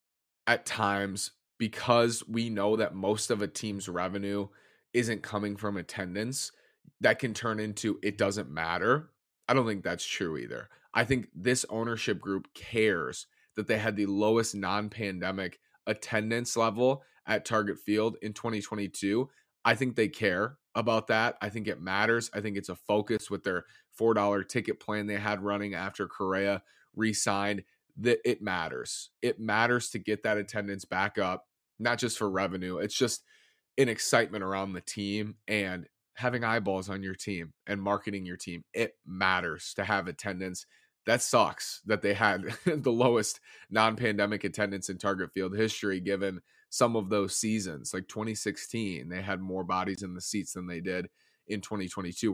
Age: 30-49